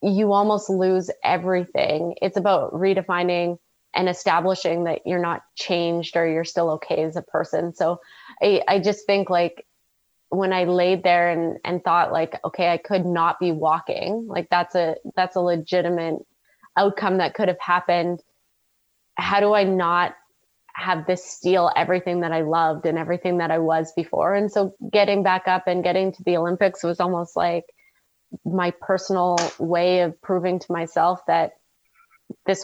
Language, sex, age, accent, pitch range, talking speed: English, female, 20-39, American, 170-190 Hz, 165 wpm